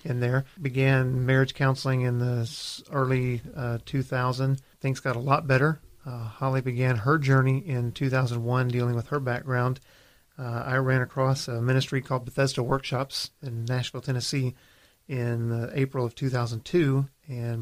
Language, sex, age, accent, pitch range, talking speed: English, male, 40-59, American, 125-135 Hz, 145 wpm